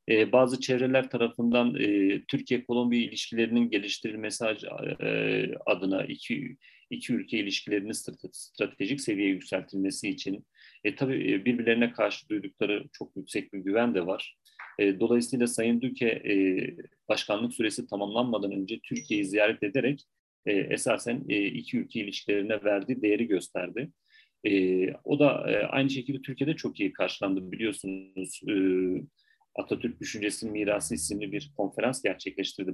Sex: male